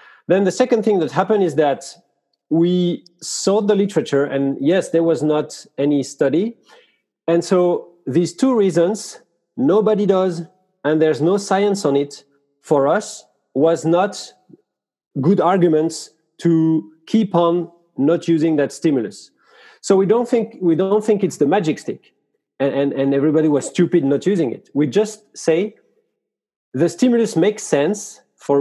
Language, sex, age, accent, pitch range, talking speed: English, male, 40-59, French, 155-210 Hz, 155 wpm